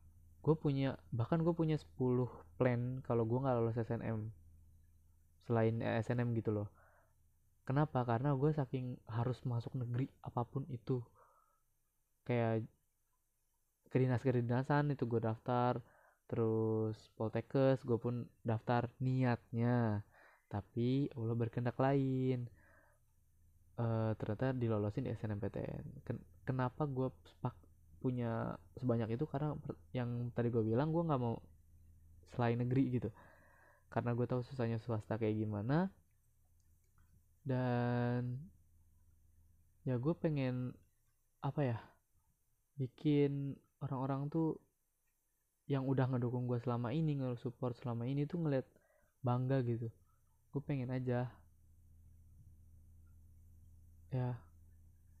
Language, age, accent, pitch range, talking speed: Indonesian, 20-39, native, 100-130 Hz, 105 wpm